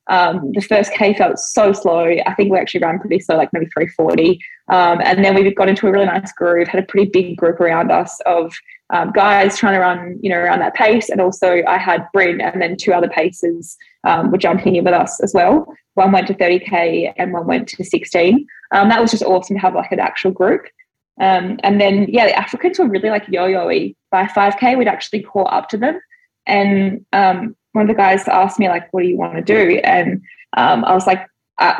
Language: English